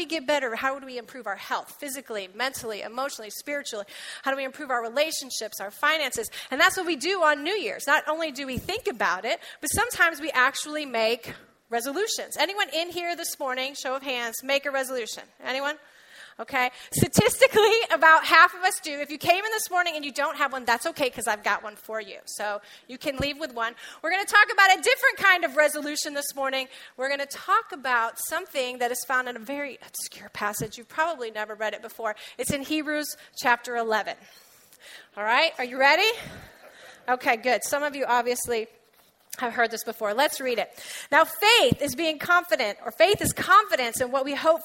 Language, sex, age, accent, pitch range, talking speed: English, female, 30-49, American, 235-310 Hz, 205 wpm